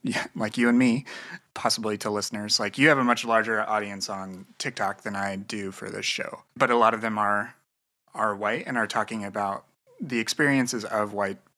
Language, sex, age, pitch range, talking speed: English, male, 30-49, 100-120 Hz, 200 wpm